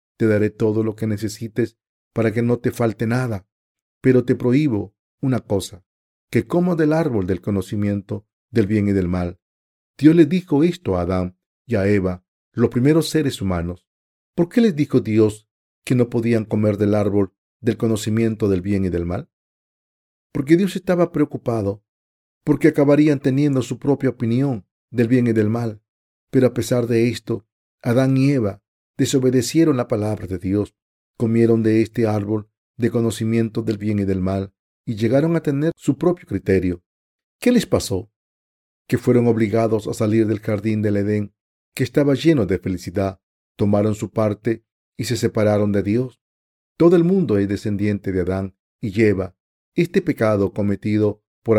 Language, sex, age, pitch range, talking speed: Spanish, male, 40-59, 100-130 Hz, 165 wpm